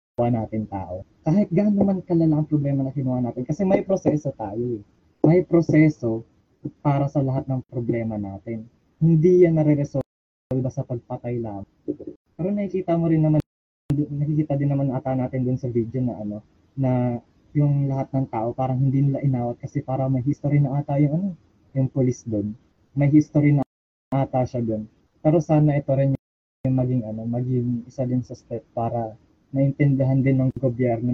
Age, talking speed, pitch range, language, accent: 20-39, 170 wpm, 115-140 Hz, English, Filipino